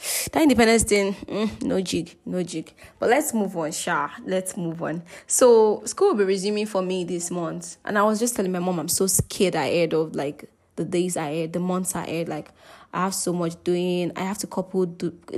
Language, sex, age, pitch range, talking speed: English, female, 20-39, 170-205 Hz, 220 wpm